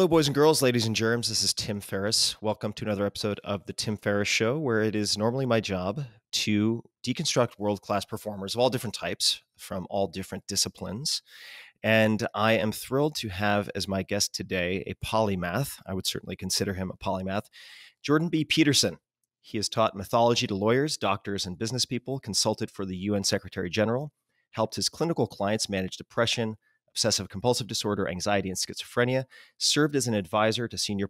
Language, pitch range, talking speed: English, 95-115 Hz, 180 wpm